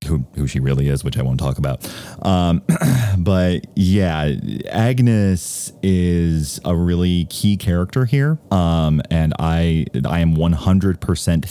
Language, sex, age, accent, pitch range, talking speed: English, male, 30-49, American, 70-95 Hz, 145 wpm